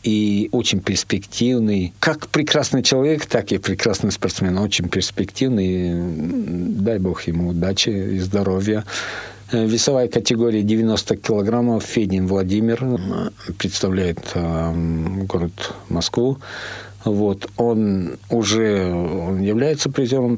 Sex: male